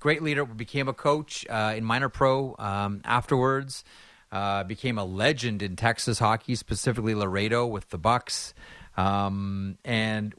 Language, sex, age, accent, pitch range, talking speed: English, male, 30-49, American, 100-130 Hz, 140 wpm